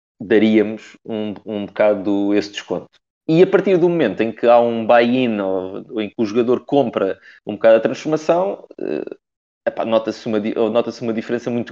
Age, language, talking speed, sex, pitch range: 20-39, Portuguese, 170 wpm, male, 105-135 Hz